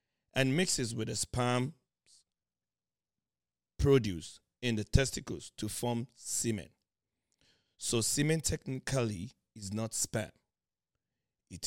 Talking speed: 100 wpm